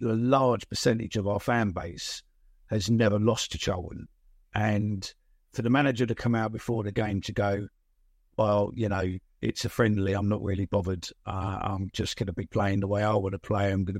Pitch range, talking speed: 100-120 Hz, 210 wpm